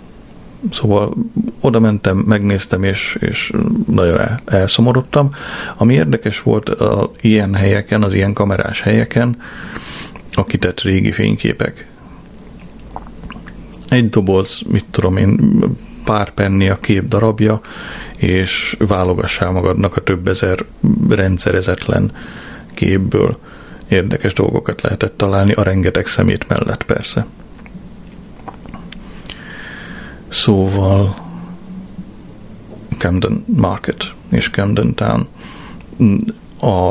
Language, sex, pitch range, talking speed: Hungarian, male, 95-115 Hz, 90 wpm